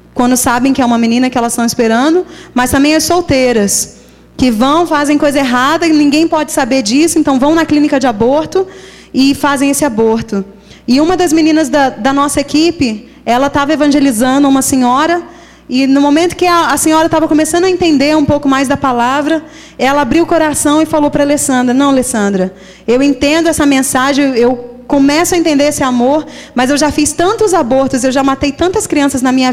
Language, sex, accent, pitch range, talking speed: Portuguese, female, Brazilian, 255-305 Hz, 195 wpm